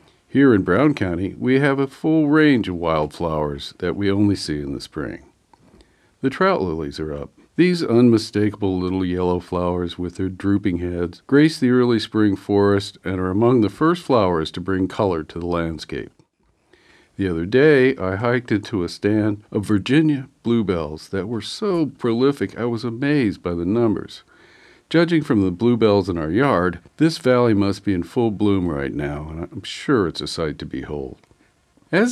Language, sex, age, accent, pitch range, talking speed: English, male, 50-69, American, 85-120 Hz, 175 wpm